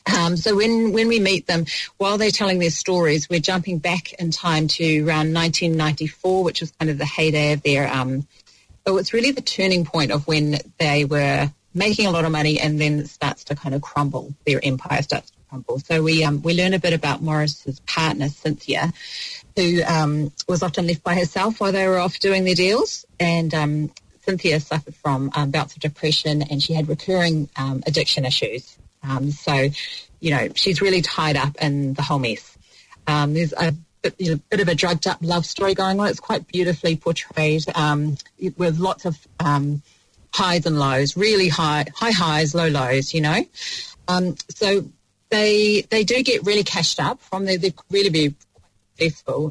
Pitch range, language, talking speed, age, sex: 145-180 Hz, English, 195 wpm, 40-59, female